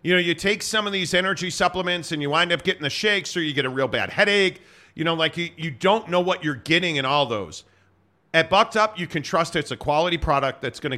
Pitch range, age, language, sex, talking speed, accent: 145-185 Hz, 40-59, English, male, 260 wpm, American